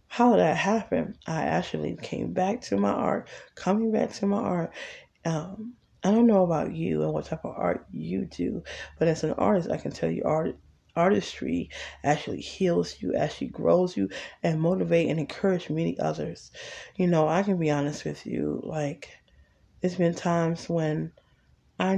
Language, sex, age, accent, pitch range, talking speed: English, female, 20-39, American, 145-185 Hz, 175 wpm